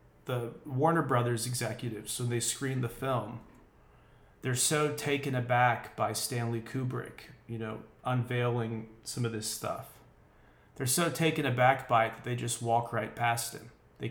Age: 30-49